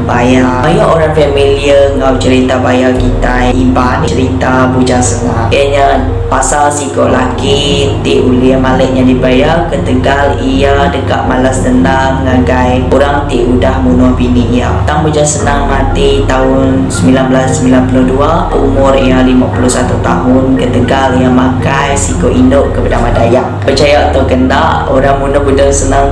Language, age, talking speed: Malay, 20-39, 130 wpm